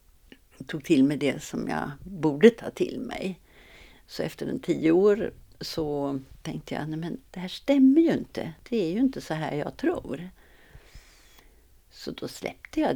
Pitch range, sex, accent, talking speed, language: 150-215 Hz, female, native, 170 wpm, Swedish